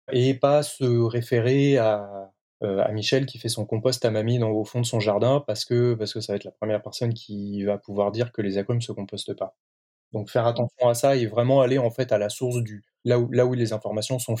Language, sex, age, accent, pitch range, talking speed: French, male, 20-39, French, 105-125 Hz, 260 wpm